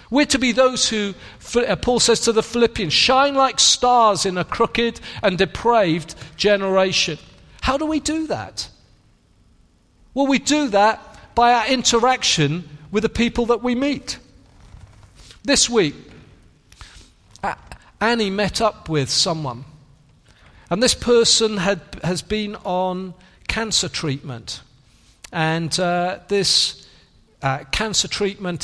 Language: English